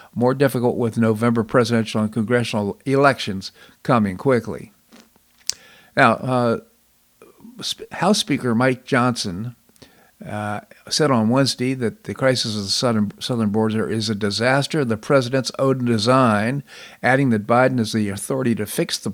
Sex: male